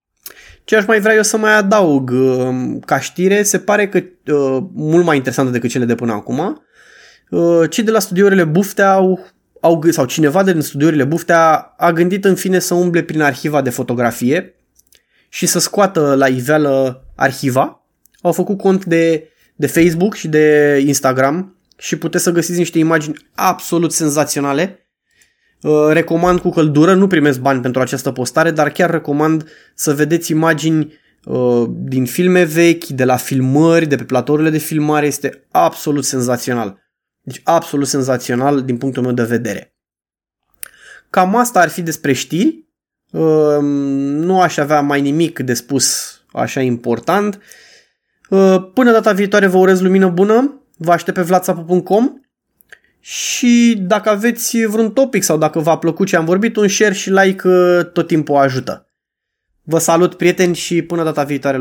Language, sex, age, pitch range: Romanian, male, 20-39, 140-185 Hz